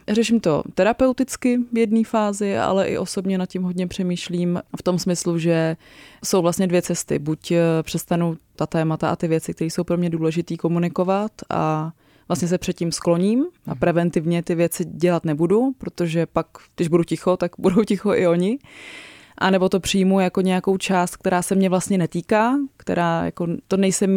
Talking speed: 175 wpm